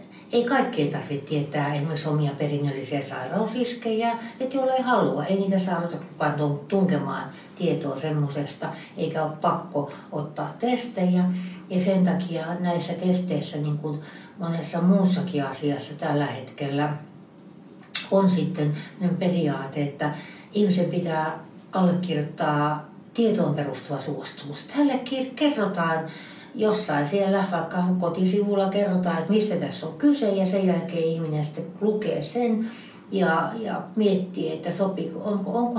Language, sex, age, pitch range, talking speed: Finnish, female, 60-79, 150-195 Hz, 115 wpm